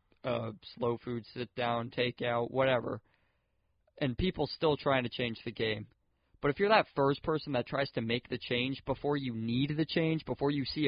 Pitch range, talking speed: 110-135 Hz, 200 wpm